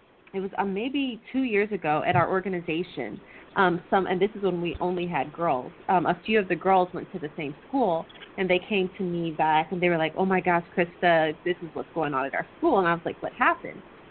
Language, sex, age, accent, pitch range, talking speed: English, female, 30-49, American, 170-210 Hz, 250 wpm